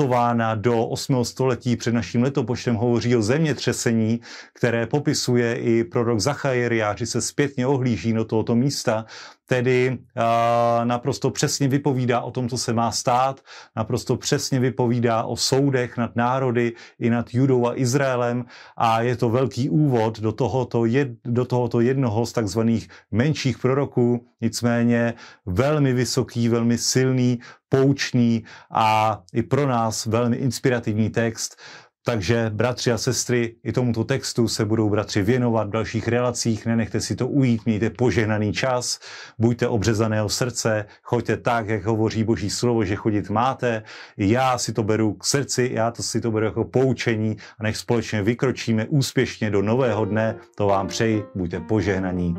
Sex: male